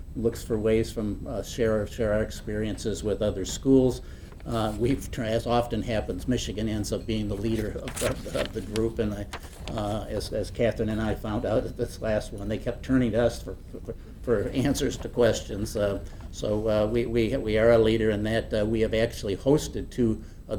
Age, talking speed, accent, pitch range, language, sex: 60-79, 205 wpm, American, 105-120 Hz, English, male